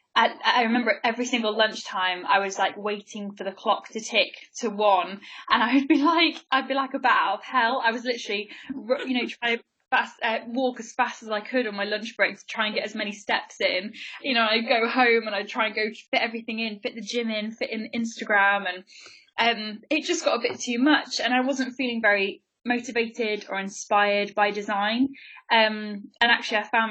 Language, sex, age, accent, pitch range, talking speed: English, female, 10-29, British, 205-240 Hz, 220 wpm